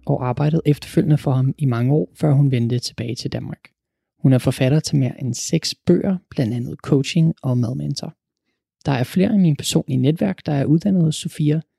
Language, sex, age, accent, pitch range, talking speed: Danish, male, 20-39, native, 135-170 Hz, 200 wpm